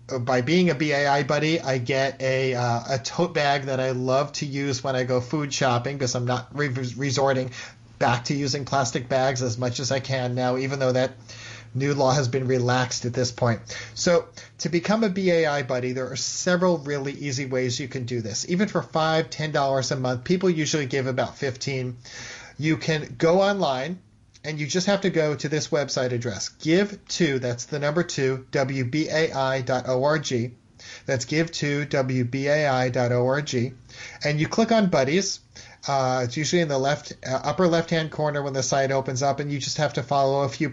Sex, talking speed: male, 190 wpm